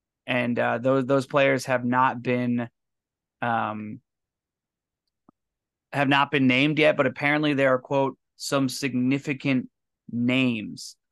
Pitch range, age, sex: 120-140 Hz, 20-39, male